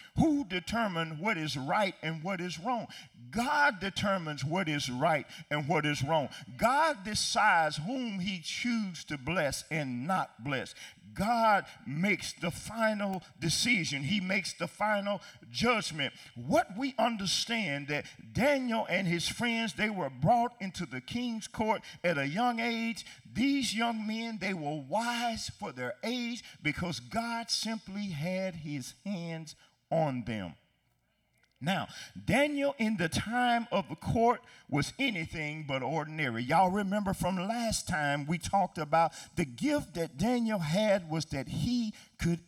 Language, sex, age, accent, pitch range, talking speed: English, male, 50-69, American, 160-225 Hz, 145 wpm